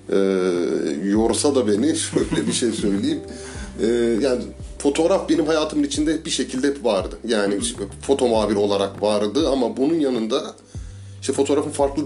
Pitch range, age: 100-125 Hz, 30-49